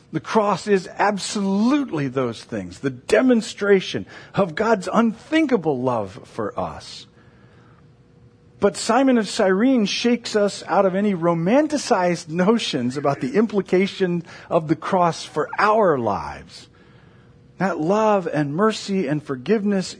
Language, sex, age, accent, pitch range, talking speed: English, male, 50-69, American, 155-210 Hz, 120 wpm